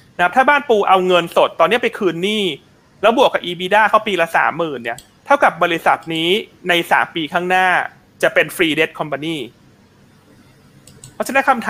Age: 30-49